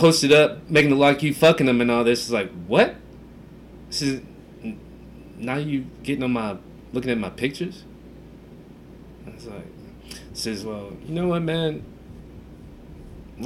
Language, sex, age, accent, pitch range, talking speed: English, male, 30-49, American, 125-190 Hz, 150 wpm